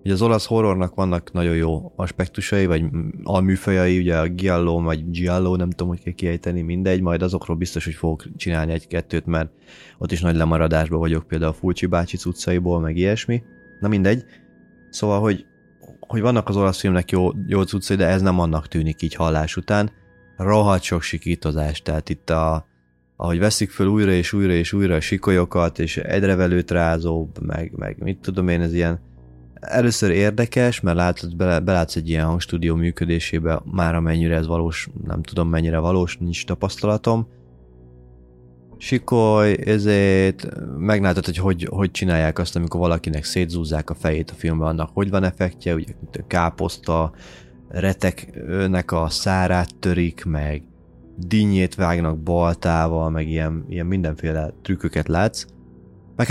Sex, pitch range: male, 80-95 Hz